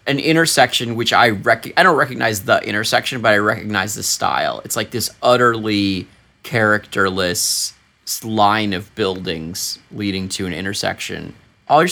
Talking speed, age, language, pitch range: 140 wpm, 30-49, English, 100-125 Hz